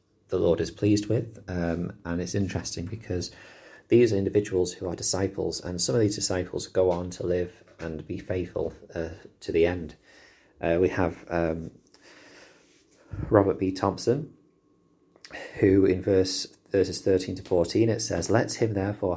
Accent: British